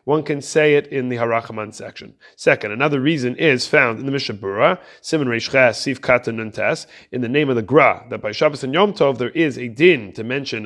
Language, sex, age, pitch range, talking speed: English, male, 30-49, 115-145 Hz, 215 wpm